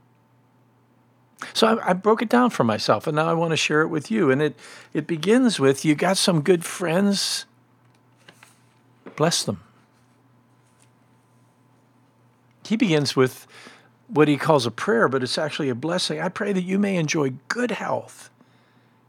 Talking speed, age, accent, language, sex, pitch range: 155 wpm, 50-69, American, English, male, 125-175 Hz